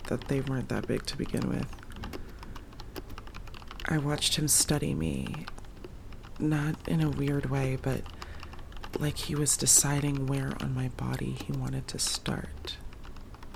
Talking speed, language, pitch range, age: 135 wpm, English, 115-140 Hz, 30-49